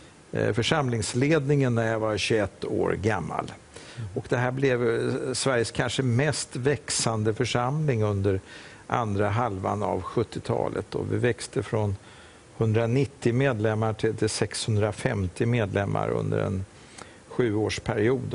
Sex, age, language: male, 50-69, English